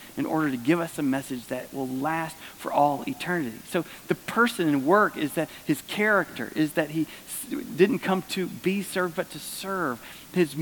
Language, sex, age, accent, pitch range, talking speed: English, male, 40-59, American, 130-185 Hz, 190 wpm